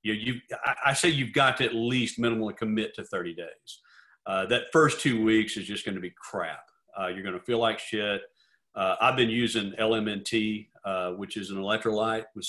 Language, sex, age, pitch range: English, male, 40-59, 105-135 Hz